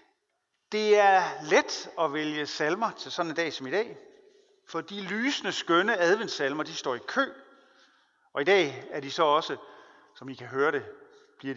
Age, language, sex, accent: 40-59, Danish, male, native